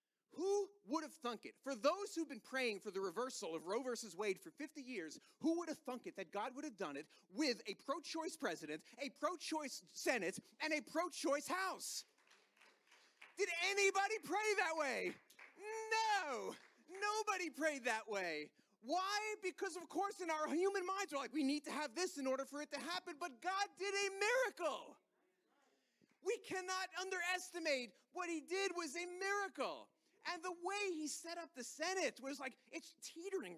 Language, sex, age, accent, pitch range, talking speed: English, male, 30-49, American, 275-370 Hz, 175 wpm